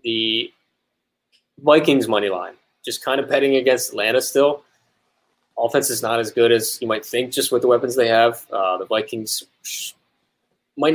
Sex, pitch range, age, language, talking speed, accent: male, 110-150 Hz, 20-39, English, 165 wpm, American